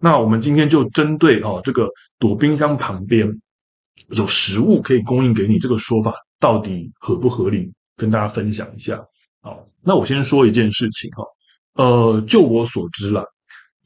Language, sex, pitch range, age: Chinese, male, 110-130 Hz, 20-39